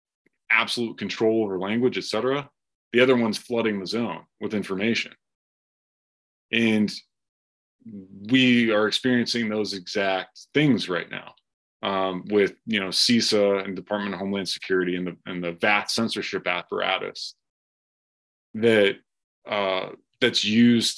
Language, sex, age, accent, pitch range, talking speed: English, male, 20-39, American, 95-120 Hz, 125 wpm